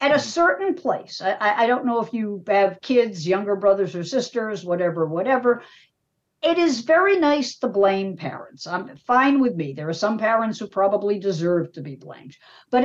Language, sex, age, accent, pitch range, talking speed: English, female, 50-69, American, 185-260 Hz, 185 wpm